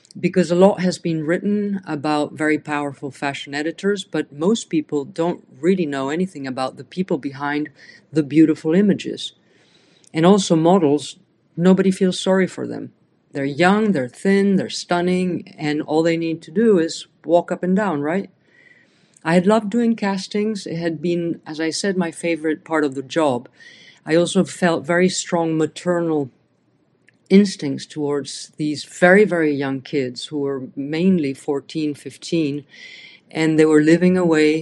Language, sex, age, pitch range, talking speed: English, female, 50-69, 145-180 Hz, 160 wpm